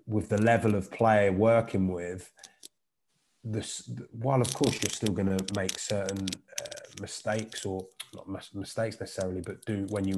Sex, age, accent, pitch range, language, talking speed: male, 20-39, British, 95-105 Hz, English, 155 wpm